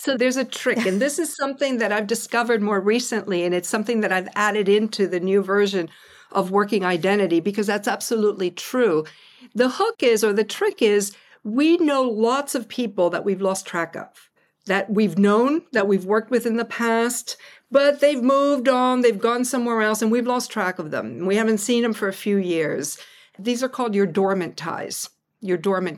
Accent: American